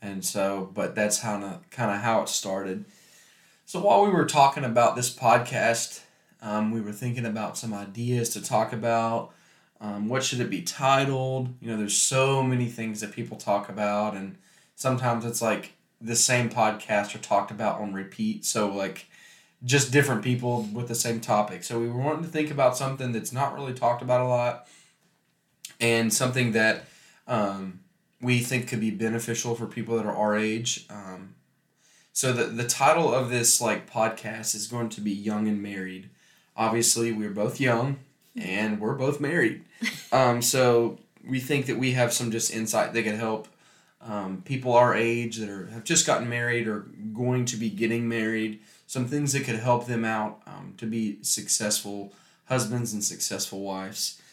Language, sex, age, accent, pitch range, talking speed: English, male, 20-39, American, 105-125 Hz, 180 wpm